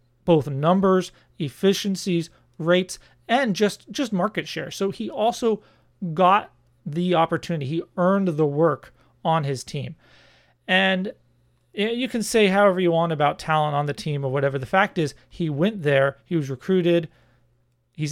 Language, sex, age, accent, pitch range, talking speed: English, male, 40-59, American, 135-190 Hz, 150 wpm